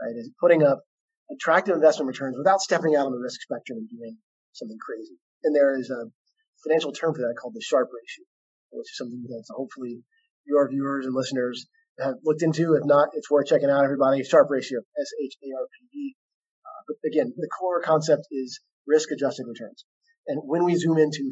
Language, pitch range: English, 135-205 Hz